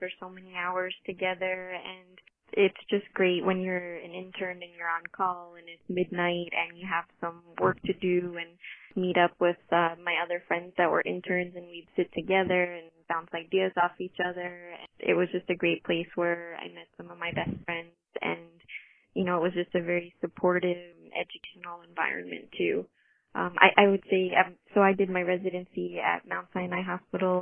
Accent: American